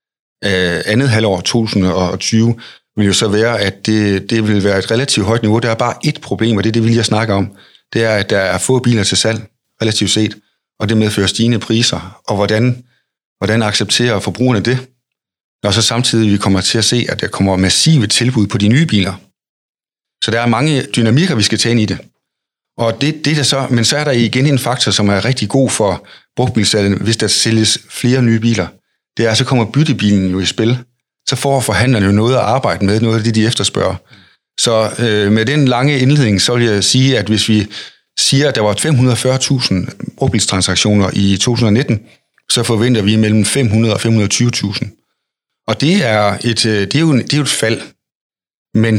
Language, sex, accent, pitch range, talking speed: Danish, male, native, 105-125 Hz, 200 wpm